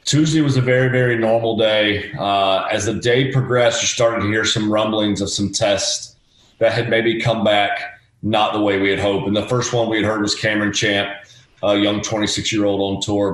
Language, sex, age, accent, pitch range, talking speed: English, male, 30-49, American, 100-120 Hz, 210 wpm